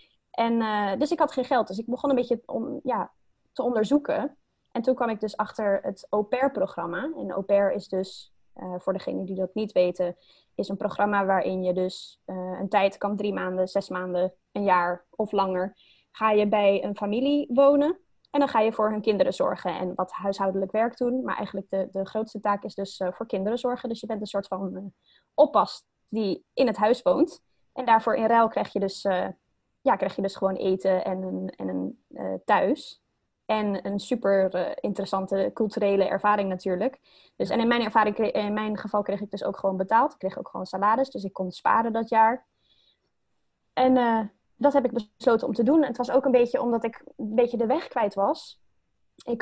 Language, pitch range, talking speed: Dutch, 195-240 Hz, 210 wpm